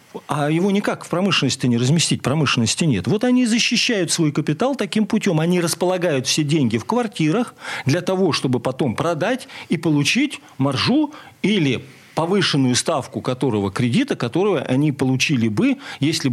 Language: Russian